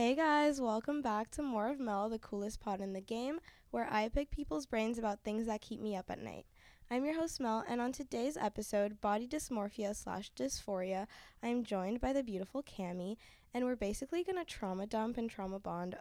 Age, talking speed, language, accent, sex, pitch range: 10-29, 205 wpm, English, American, female, 195-250 Hz